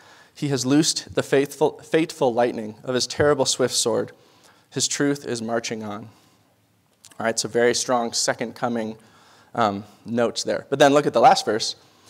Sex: male